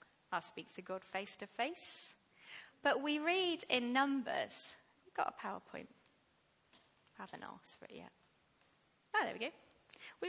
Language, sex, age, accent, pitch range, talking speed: English, female, 30-49, British, 225-295 Hz, 155 wpm